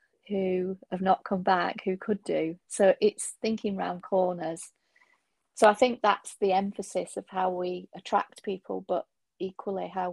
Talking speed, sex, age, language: 160 wpm, female, 30-49, English